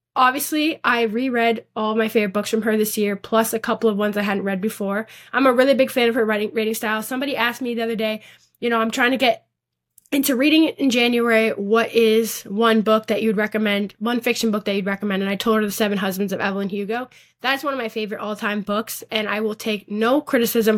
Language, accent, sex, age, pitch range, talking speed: English, American, female, 10-29, 215-250 Hz, 240 wpm